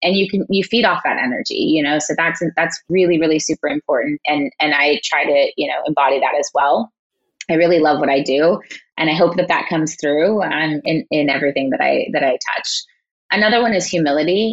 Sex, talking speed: female, 225 wpm